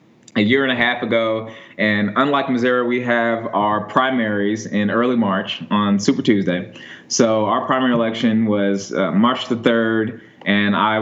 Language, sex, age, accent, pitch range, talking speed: English, male, 20-39, American, 105-125 Hz, 165 wpm